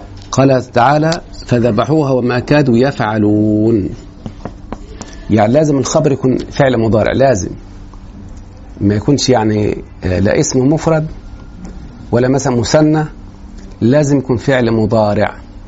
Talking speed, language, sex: 100 wpm, Arabic, male